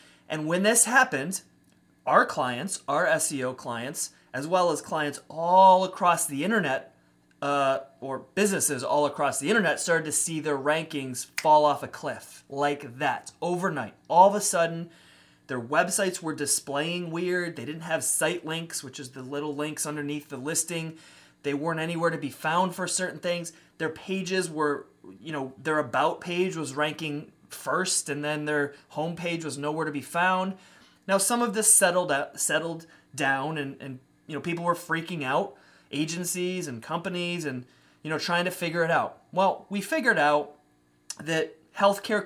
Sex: male